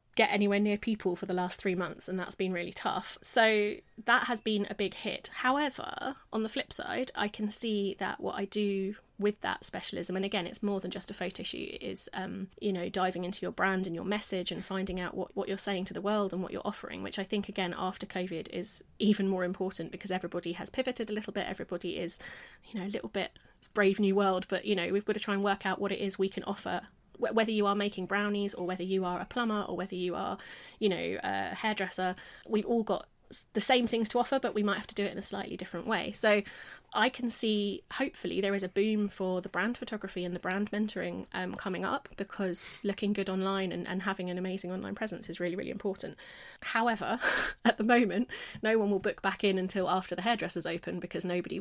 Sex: female